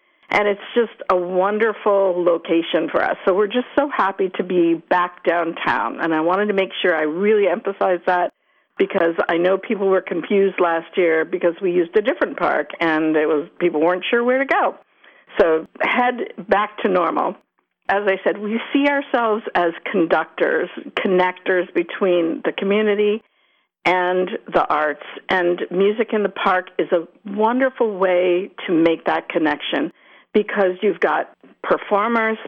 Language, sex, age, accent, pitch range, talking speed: English, female, 50-69, American, 180-230 Hz, 160 wpm